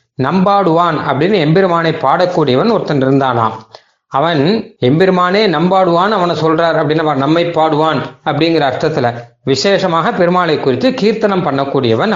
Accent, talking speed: native, 105 wpm